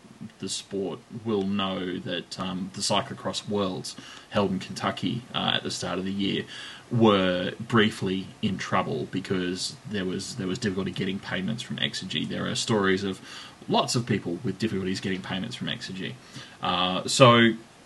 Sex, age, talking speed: male, 20-39, 160 wpm